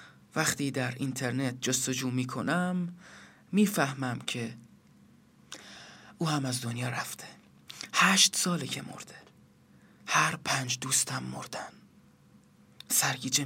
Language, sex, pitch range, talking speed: Persian, male, 130-160 Hz, 95 wpm